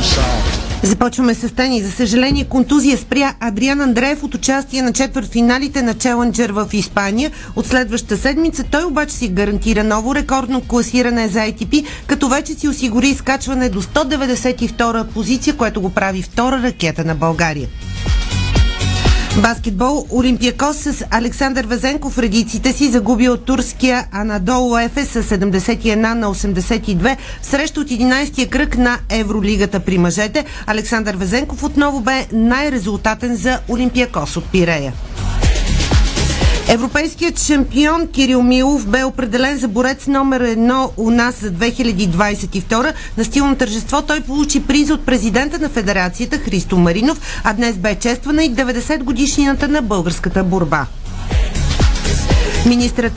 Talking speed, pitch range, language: 130 wpm, 210-270 Hz, Bulgarian